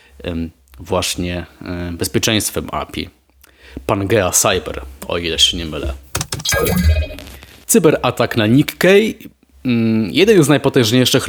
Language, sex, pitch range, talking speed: Polish, male, 100-130 Hz, 85 wpm